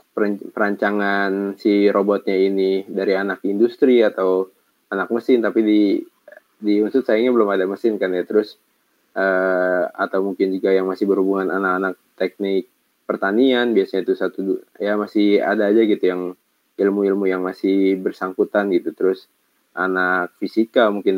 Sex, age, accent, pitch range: male, 20-39, native, 95-115 Hz